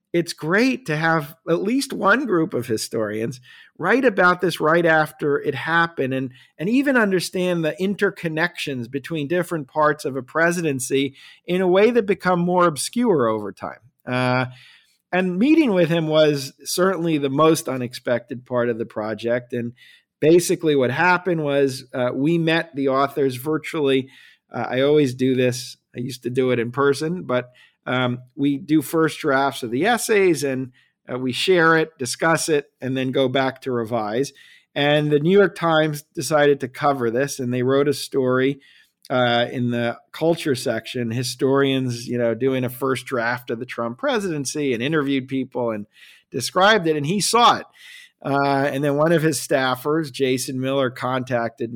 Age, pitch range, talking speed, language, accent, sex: 50-69, 125-165 Hz, 170 wpm, English, American, male